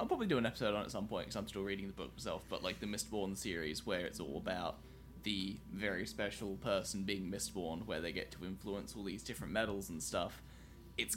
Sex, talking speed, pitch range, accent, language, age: male, 235 wpm, 100-115 Hz, Australian, English, 10-29